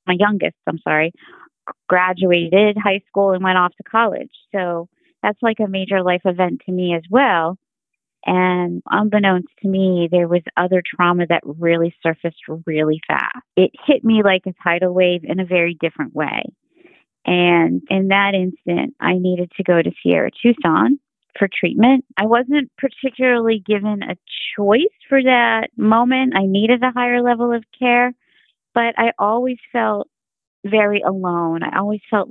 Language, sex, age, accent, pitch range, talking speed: English, female, 30-49, American, 175-215 Hz, 160 wpm